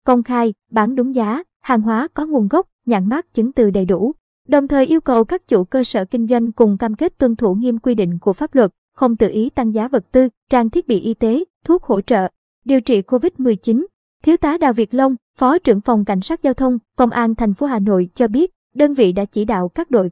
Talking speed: 245 wpm